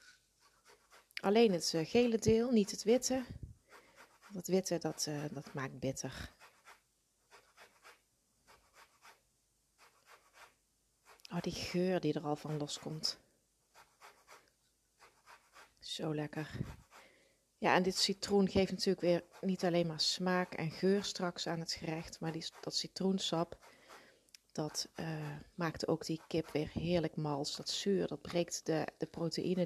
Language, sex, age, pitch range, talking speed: Dutch, female, 30-49, 160-205 Hz, 125 wpm